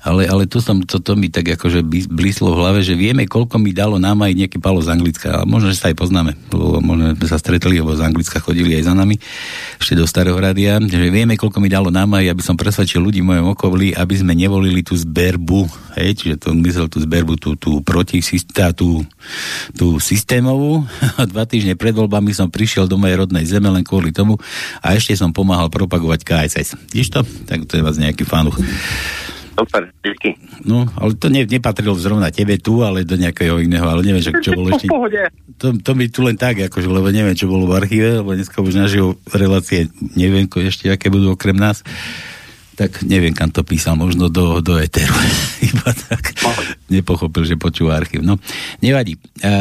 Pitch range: 85-105 Hz